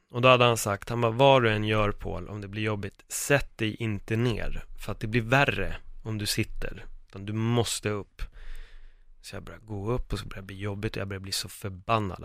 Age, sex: 30-49, male